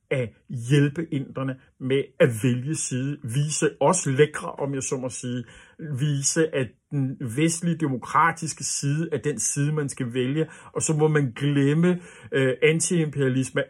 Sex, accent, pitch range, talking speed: male, native, 130-160 Hz, 150 wpm